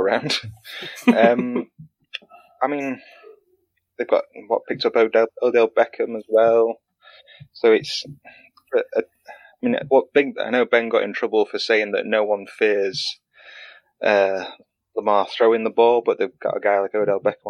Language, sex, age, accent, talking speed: English, male, 20-39, British, 160 wpm